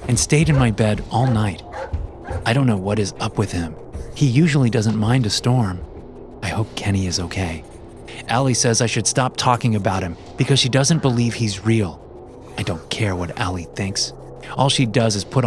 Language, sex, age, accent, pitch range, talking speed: English, male, 30-49, American, 100-125 Hz, 200 wpm